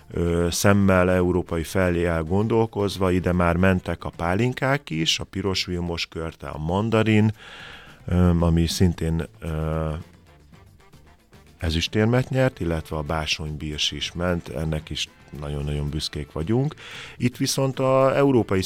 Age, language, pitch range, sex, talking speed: 30-49, Hungarian, 80-100 Hz, male, 125 wpm